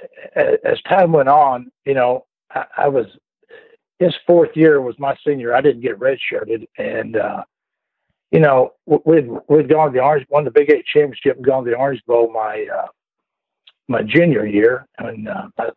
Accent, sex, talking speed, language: American, male, 185 wpm, English